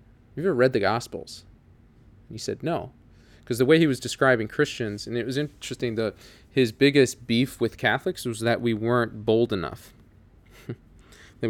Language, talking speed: English, 170 wpm